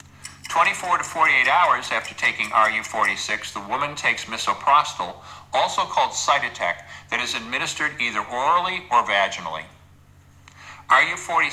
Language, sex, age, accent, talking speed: English, male, 50-69, American, 115 wpm